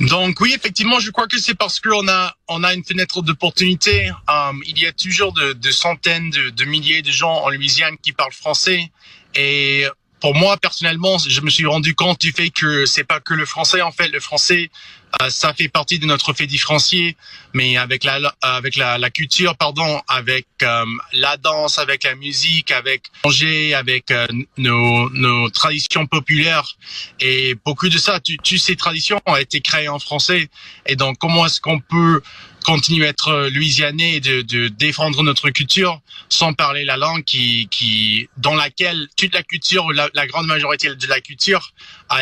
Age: 30-49